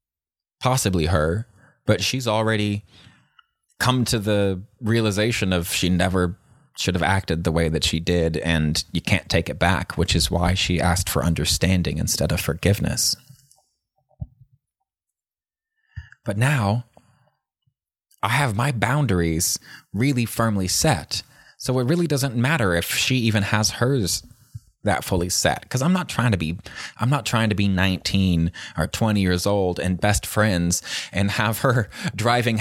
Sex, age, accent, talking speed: male, 20-39, American, 150 wpm